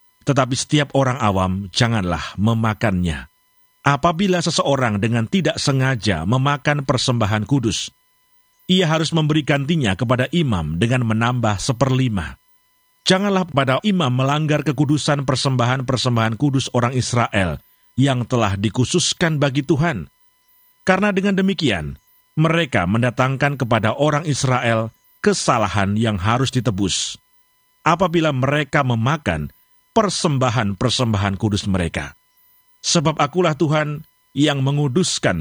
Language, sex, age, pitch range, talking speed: Indonesian, male, 50-69, 115-165 Hz, 100 wpm